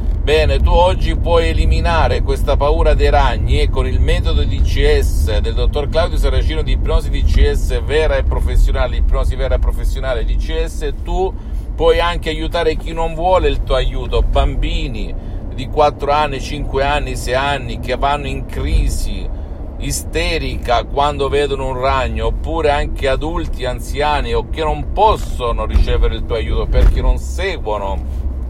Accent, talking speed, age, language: native, 155 wpm, 50-69, Italian